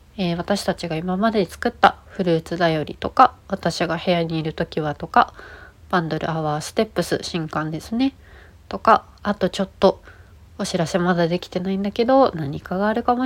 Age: 30-49